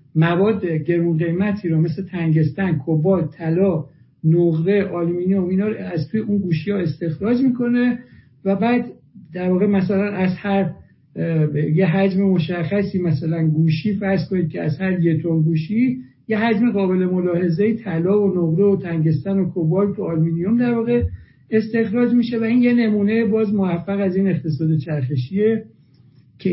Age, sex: 60-79, male